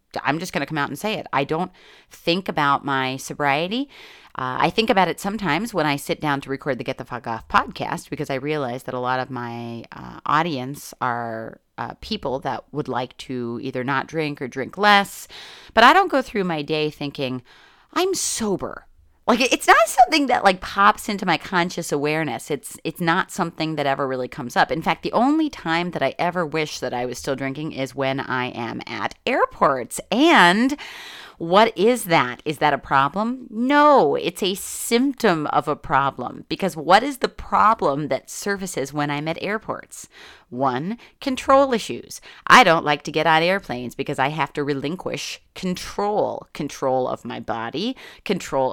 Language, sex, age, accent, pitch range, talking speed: English, female, 30-49, American, 135-195 Hz, 190 wpm